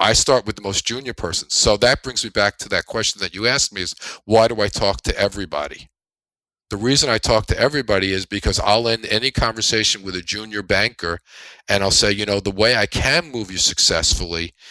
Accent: American